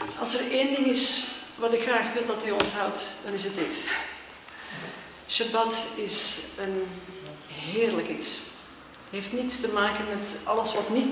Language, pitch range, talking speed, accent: Dutch, 195-240 Hz, 160 wpm, Dutch